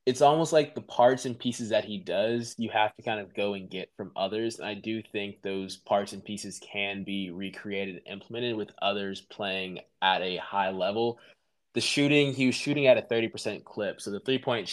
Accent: American